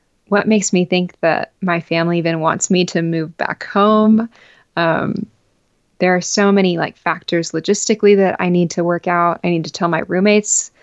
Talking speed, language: 190 wpm, English